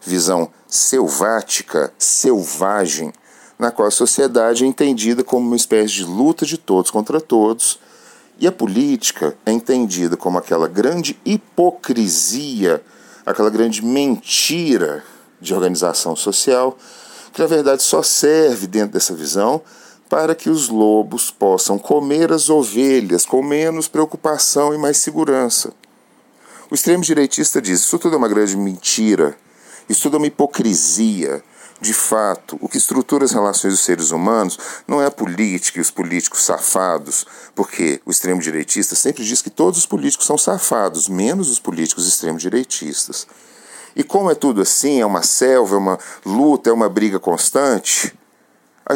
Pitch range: 100-150 Hz